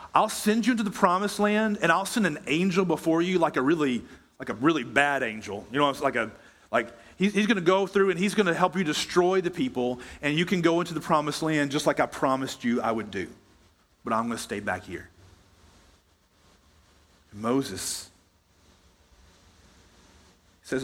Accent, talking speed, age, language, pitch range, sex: American, 200 wpm, 40-59, English, 100-165 Hz, male